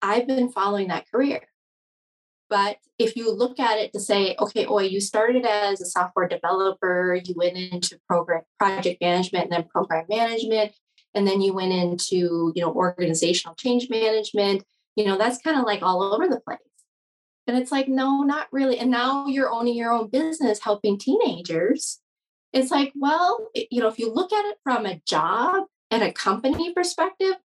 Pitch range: 180-245 Hz